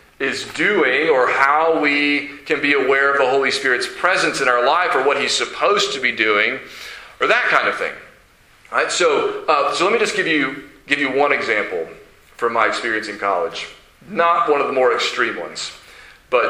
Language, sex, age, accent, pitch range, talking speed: English, male, 40-59, American, 105-155 Hz, 205 wpm